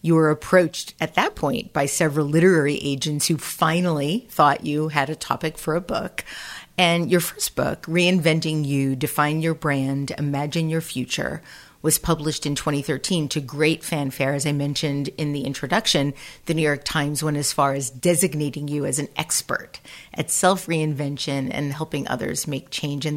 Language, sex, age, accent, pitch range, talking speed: English, female, 40-59, American, 145-165 Hz, 170 wpm